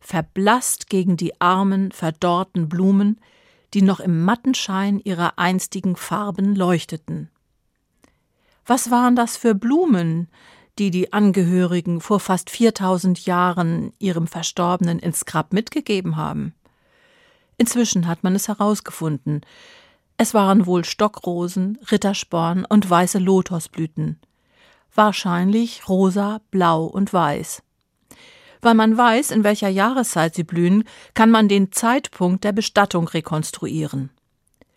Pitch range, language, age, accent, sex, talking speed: 175-225 Hz, German, 50-69, German, female, 115 wpm